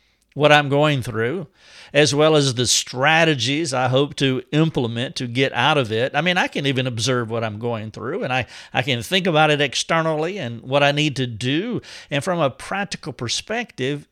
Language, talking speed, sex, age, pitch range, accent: English, 200 wpm, male, 50-69, 120-165 Hz, American